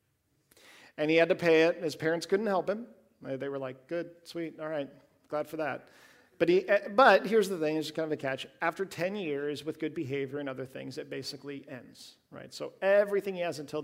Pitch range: 150-235 Hz